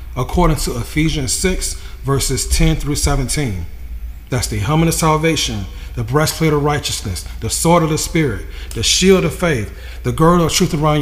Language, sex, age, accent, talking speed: English, male, 40-59, American, 170 wpm